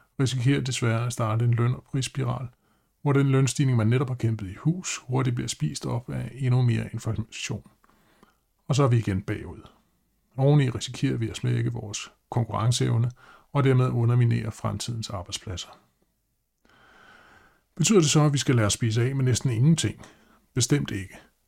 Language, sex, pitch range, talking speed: Danish, male, 110-135 Hz, 165 wpm